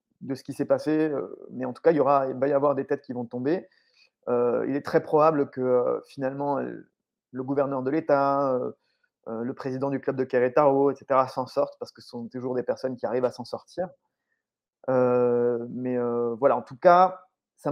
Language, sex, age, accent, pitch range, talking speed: French, male, 30-49, French, 130-155 Hz, 215 wpm